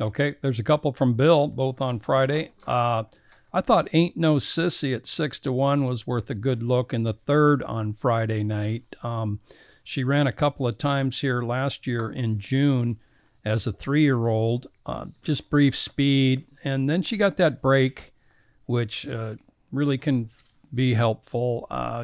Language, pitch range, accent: English, 115-140 Hz, American